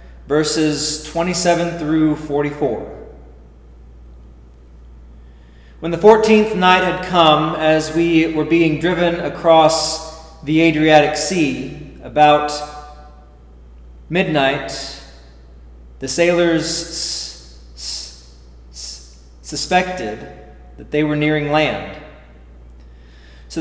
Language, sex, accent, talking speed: English, male, American, 75 wpm